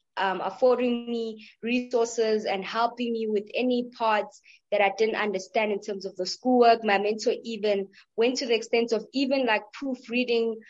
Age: 20-39